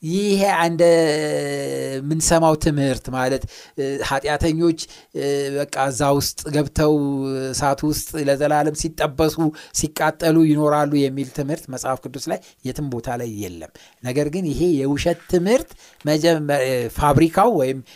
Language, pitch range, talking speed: Amharic, 140-195 Hz, 95 wpm